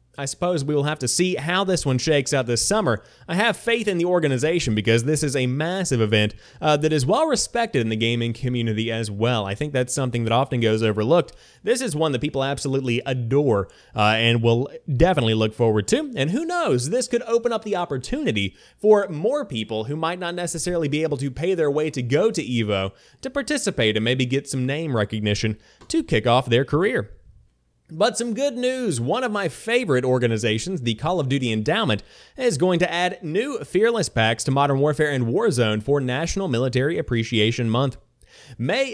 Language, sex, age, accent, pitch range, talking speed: English, male, 30-49, American, 120-175 Hz, 200 wpm